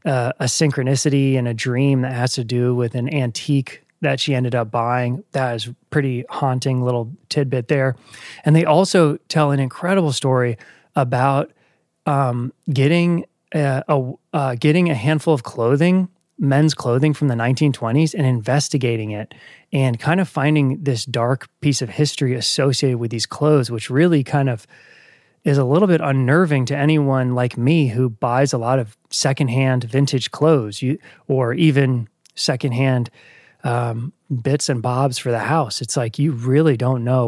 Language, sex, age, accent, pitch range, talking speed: English, male, 20-39, American, 125-150 Hz, 160 wpm